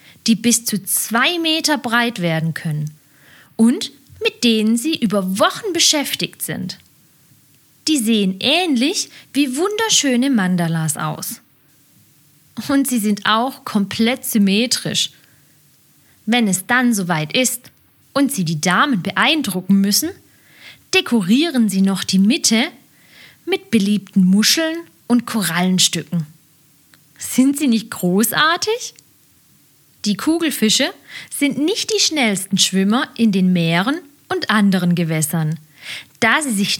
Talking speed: 115 wpm